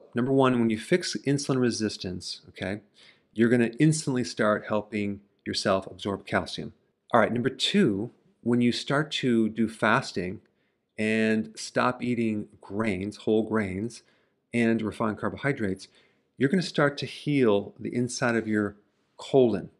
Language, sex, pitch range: English, male, 105-125 Hz